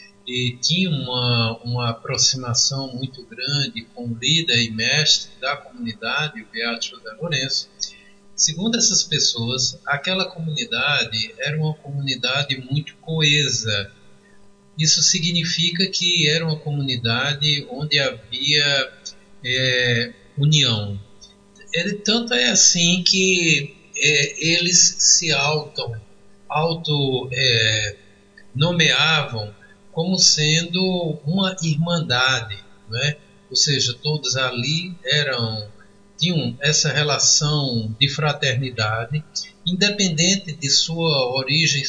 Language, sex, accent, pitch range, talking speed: Portuguese, male, Brazilian, 120-165 Hz, 95 wpm